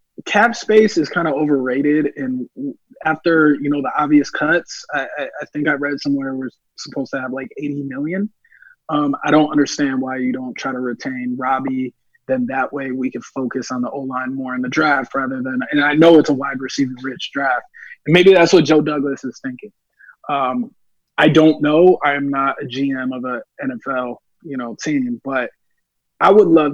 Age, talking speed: 20-39, 195 wpm